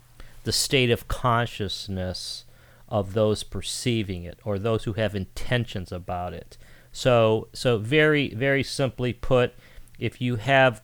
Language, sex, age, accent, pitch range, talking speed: English, male, 40-59, American, 105-125 Hz, 135 wpm